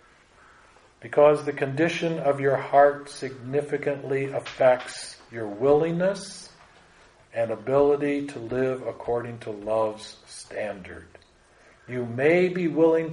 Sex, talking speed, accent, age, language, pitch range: male, 100 wpm, American, 50-69, English, 120-160 Hz